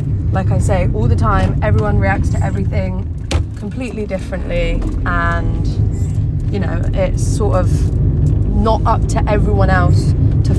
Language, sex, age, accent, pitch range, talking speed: English, female, 20-39, British, 100-125 Hz, 135 wpm